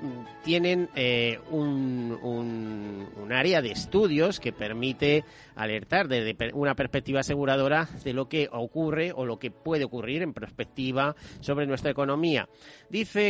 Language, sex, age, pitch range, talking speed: Spanish, male, 40-59, 115-150 Hz, 135 wpm